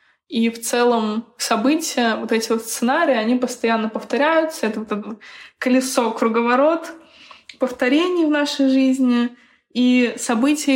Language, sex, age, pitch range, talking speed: Russian, female, 20-39, 225-260 Hz, 125 wpm